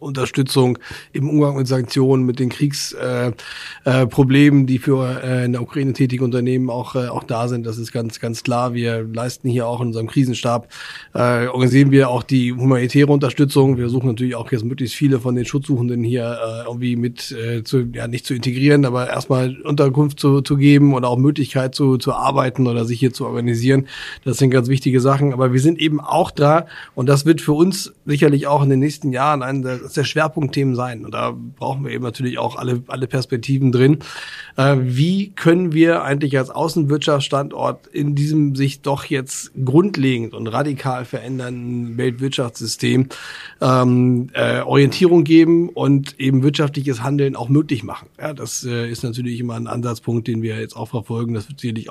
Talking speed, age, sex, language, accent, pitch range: 185 wpm, 30-49, male, German, German, 120-140 Hz